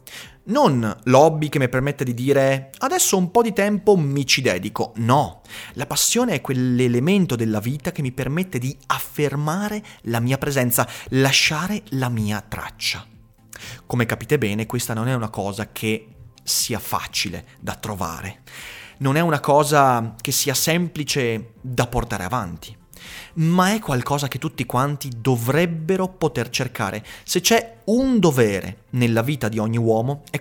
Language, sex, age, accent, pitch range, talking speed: Italian, male, 30-49, native, 115-165 Hz, 150 wpm